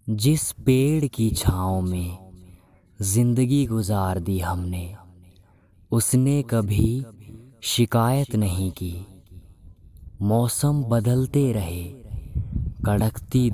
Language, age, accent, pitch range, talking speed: Hindi, 20-39, native, 90-120 Hz, 80 wpm